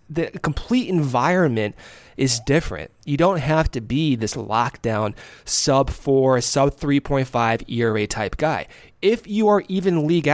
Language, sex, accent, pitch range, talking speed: English, male, American, 125-170 Hz, 130 wpm